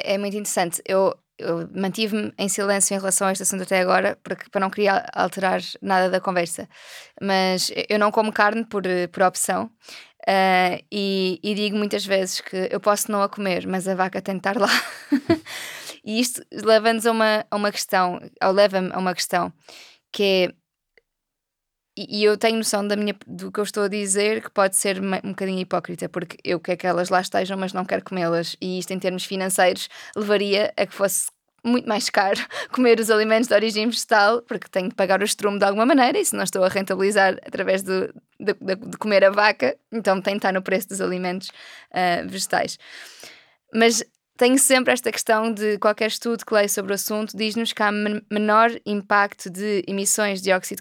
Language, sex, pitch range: Portuguese, female, 190-215 Hz